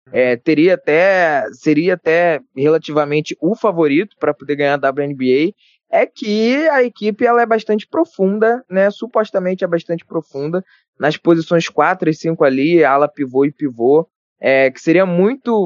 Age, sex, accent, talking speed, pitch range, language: 20-39, male, Brazilian, 145 wpm, 145-185 Hz, Portuguese